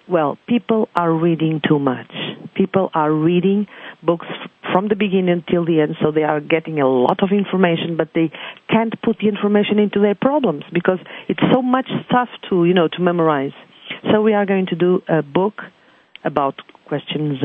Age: 50-69